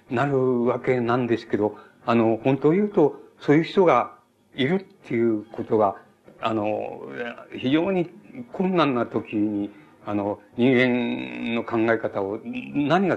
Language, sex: Japanese, male